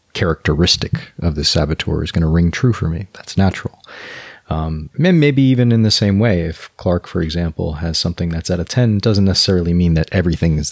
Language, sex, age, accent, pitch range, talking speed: English, male, 30-49, American, 80-95 Hz, 195 wpm